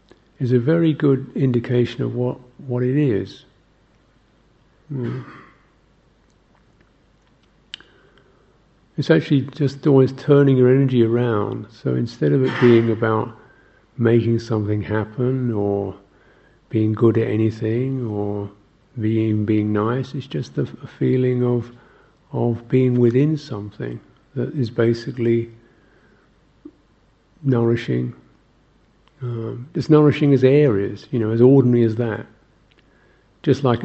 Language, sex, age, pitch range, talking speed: English, male, 50-69, 110-130 Hz, 115 wpm